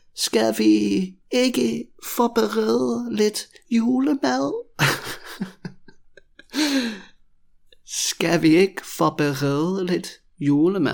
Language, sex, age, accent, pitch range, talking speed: Danish, male, 30-49, British, 135-180 Hz, 55 wpm